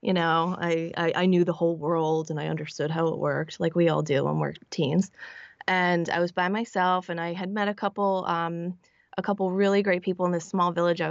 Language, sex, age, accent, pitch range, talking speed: English, female, 20-39, American, 170-195 Hz, 225 wpm